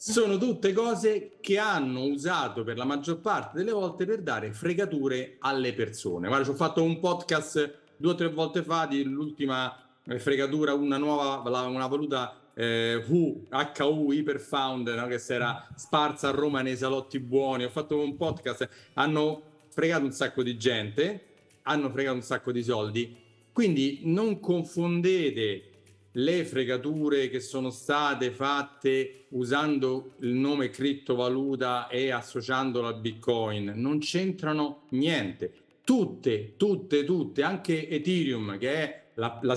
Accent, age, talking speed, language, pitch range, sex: native, 40-59, 140 wpm, Italian, 125-165 Hz, male